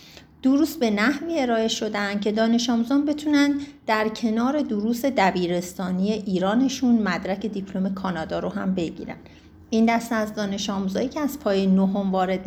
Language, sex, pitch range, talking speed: Persian, female, 190-255 Hz, 140 wpm